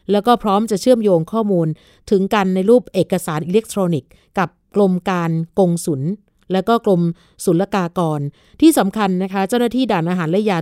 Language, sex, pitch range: Thai, female, 175-220 Hz